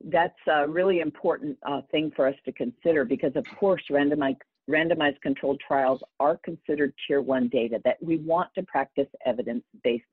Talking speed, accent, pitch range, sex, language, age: 165 wpm, American, 130-180 Hz, female, English, 50-69